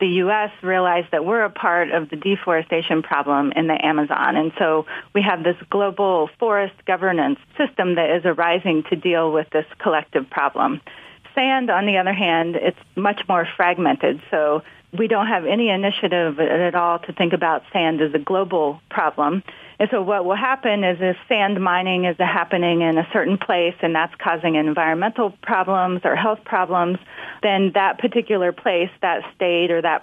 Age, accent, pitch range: 30-49, American, 160-195 Hz